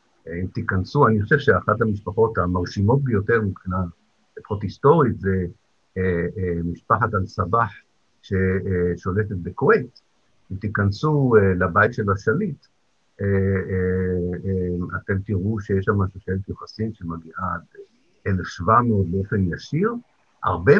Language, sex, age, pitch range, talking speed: Hebrew, male, 60-79, 90-115 Hz, 115 wpm